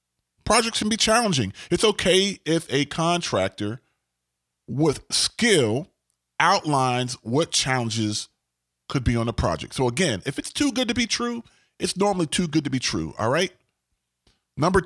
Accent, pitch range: American, 115-180 Hz